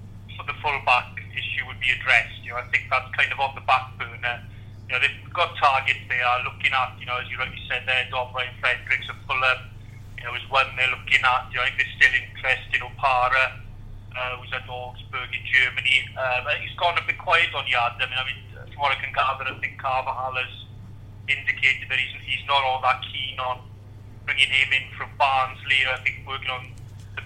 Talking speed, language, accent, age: 220 wpm, English, British, 40-59